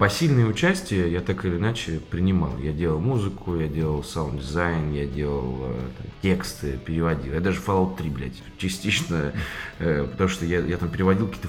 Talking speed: 170 wpm